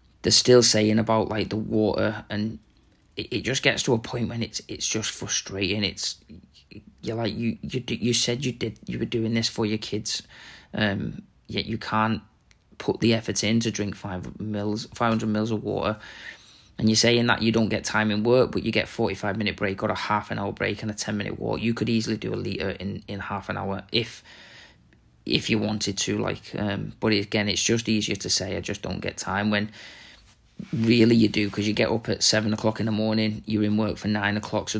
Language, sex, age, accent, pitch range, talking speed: English, male, 20-39, British, 105-115 Hz, 230 wpm